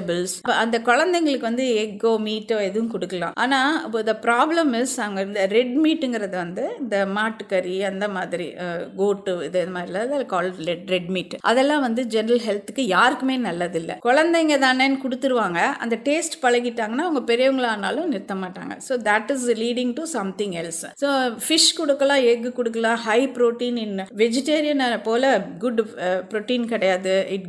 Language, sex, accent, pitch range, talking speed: English, female, Indian, 195-255 Hz, 155 wpm